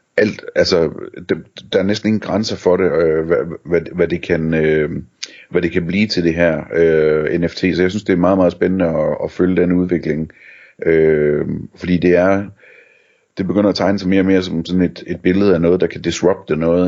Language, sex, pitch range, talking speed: Danish, male, 80-95 Hz, 215 wpm